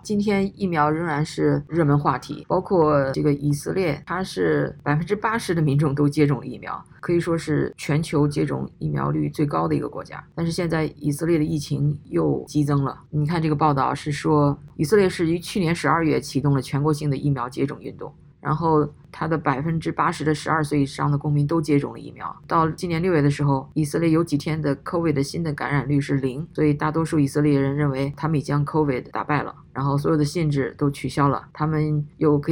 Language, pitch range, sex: Chinese, 145-160 Hz, female